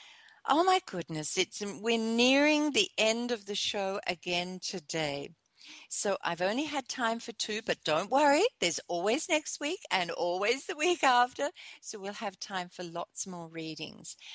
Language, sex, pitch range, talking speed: English, female, 170-245 Hz, 165 wpm